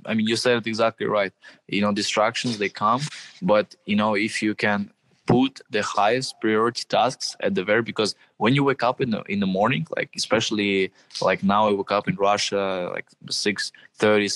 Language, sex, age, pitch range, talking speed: Croatian, male, 20-39, 100-110 Hz, 200 wpm